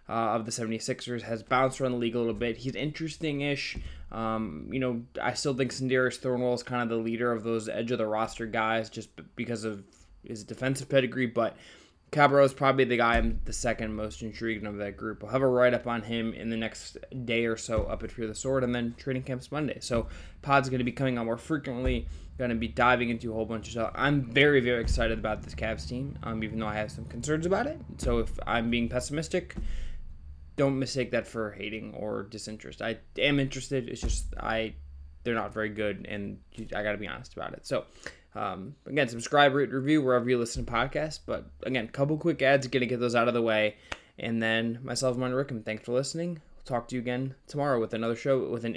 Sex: male